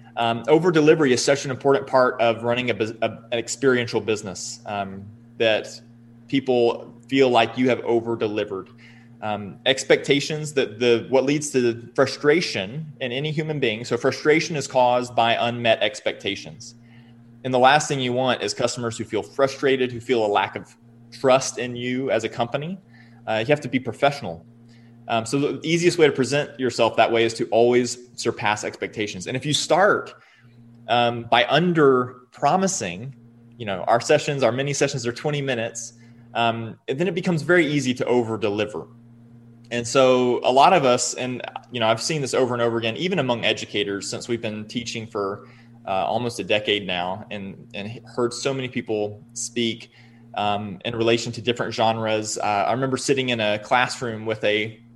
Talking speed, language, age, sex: 180 wpm, English, 20-39, male